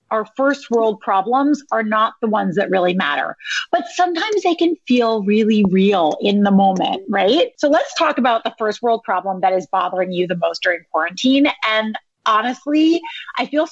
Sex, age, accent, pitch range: female, 30-49, American, 220-325 Hz